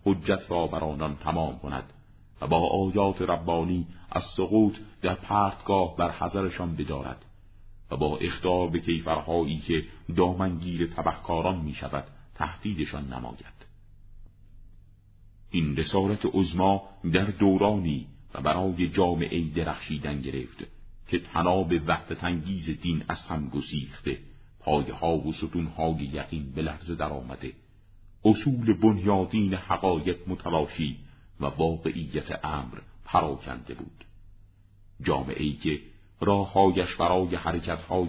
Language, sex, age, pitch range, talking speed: Persian, male, 50-69, 80-100 Hz, 105 wpm